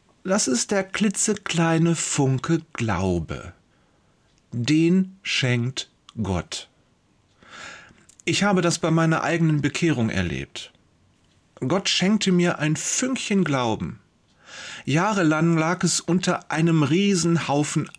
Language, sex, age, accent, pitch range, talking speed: German, male, 40-59, German, 135-185 Hz, 95 wpm